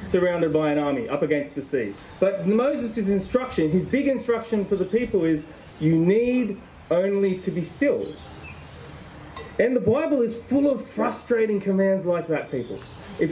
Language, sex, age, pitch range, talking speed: English, male, 30-49, 160-230 Hz, 160 wpm